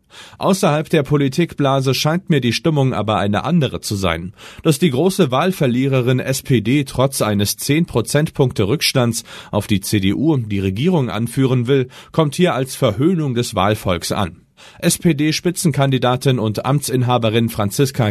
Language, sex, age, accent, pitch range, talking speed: German, male, 40-59, German, 105-145 Hz, 125 wpm